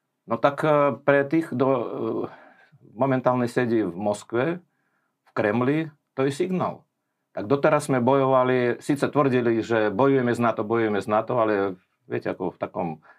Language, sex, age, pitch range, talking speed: Slovak, male, 50-69, 105-135 Hz, 145 wpm